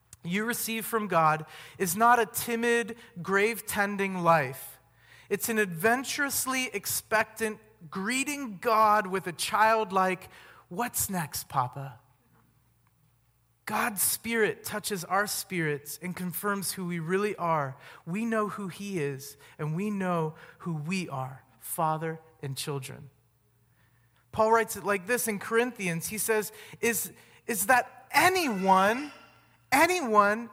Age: 30-49